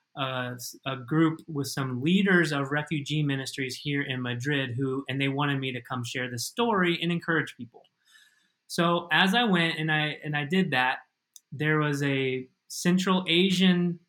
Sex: male